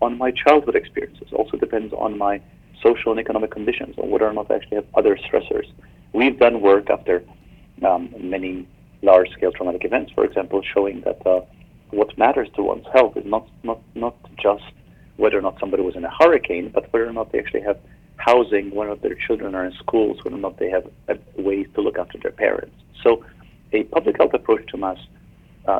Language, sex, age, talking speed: English, male, 40-59, 210 wpm